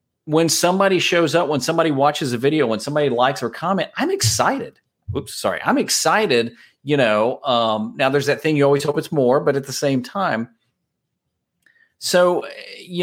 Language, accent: English, American